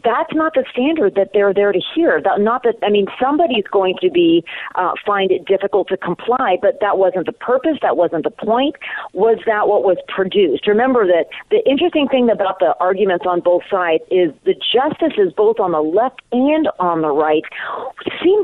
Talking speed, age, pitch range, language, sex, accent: 200 wpm, 40-59, 190-290 Hz, English, female, American